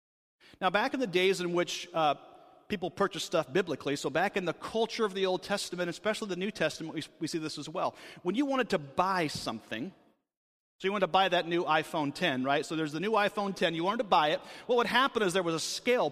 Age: 40-59